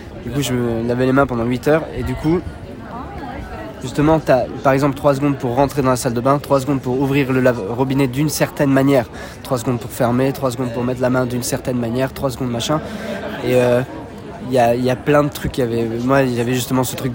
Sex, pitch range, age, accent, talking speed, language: male, 125-140 Hz, 20-39, French, 250 wpm, French